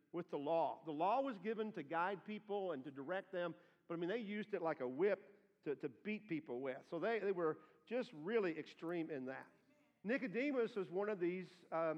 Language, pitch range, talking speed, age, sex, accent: English, 165-210 Hz, 215 wpm, 50-69, male, American